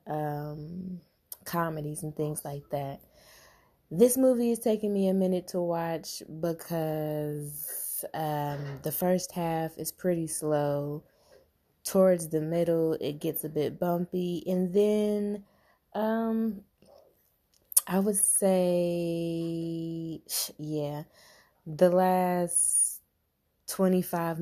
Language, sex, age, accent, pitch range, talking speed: English, female, 20-39, American, 150-180 Hz, 100 wpm